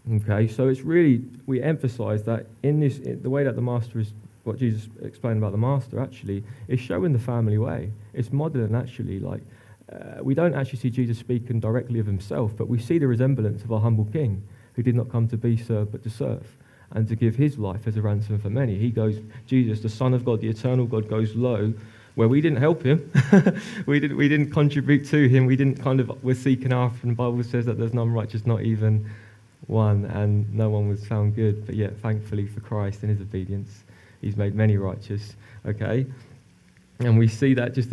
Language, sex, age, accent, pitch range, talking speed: English, male, 20-39, British, 105-130 Hz, 220 wpm